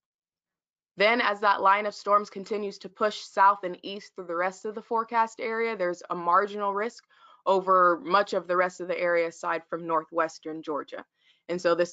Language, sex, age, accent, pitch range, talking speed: English, female, 20-39, American, 170-210 Hz, 190 wpm